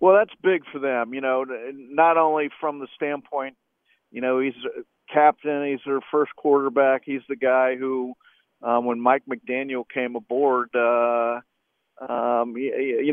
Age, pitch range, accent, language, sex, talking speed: 50-69, 125-165 Hz, American, English, male, 165 wpm